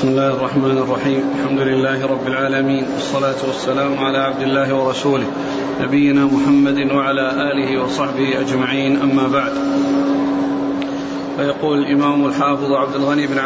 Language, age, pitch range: Arabic, 40-59, 140-160 Hz